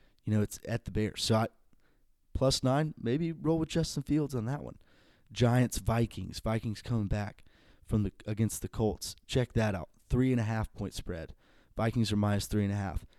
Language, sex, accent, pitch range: English, male, American, 100-120 Hz